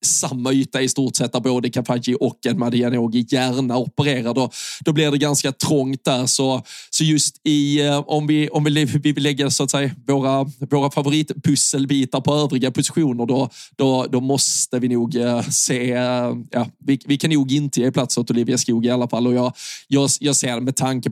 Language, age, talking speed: Swedish, 20-39, 190 wpm